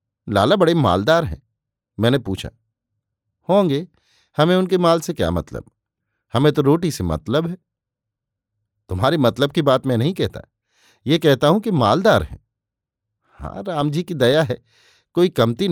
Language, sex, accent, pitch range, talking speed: Hindi, male, native, 110-155 Hz, 155 wpm